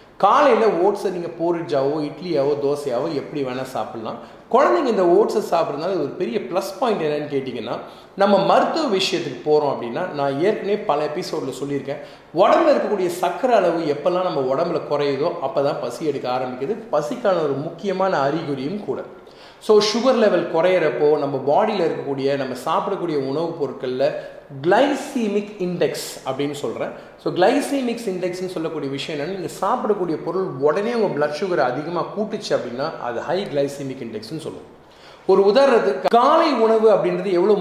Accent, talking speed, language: native, 145 wpm, Tamil